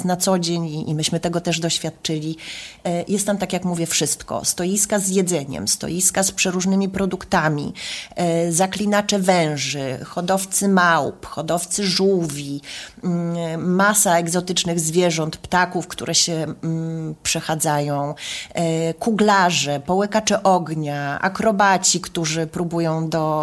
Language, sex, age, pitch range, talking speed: Polish, female, 30-49, 165-190 Hz, 105 wpm